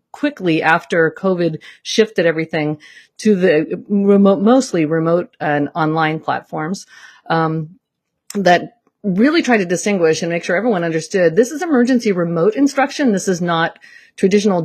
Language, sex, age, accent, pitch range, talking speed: English, female, 50-69, American, 160-215 Hz, 135 wpm